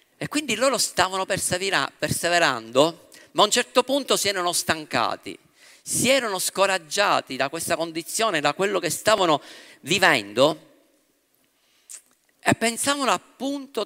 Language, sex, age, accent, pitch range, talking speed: Italian, male, 50-69, native, 185-230 Hz, 115 wpm